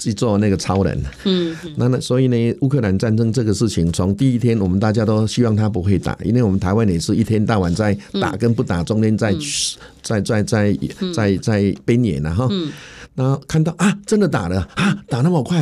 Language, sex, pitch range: Chinese, male, 100-140 Hz